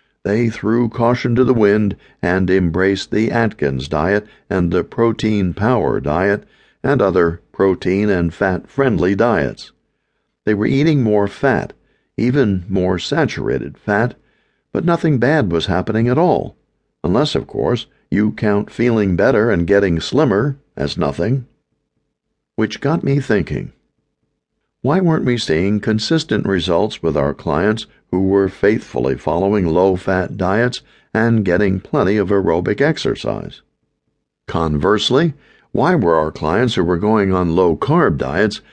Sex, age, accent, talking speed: male, 60-79, American, 130 wpm